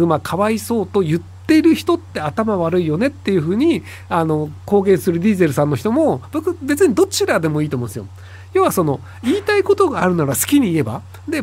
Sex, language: male, Japanese